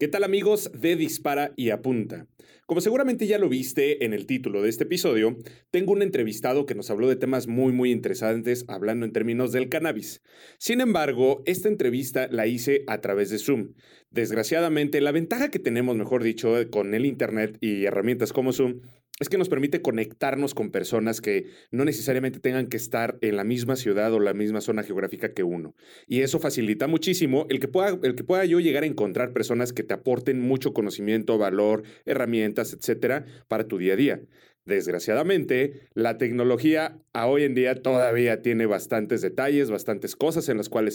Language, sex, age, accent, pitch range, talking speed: Spanish, male, 30-49, Mexican, 110-145 Hz, 180 wpm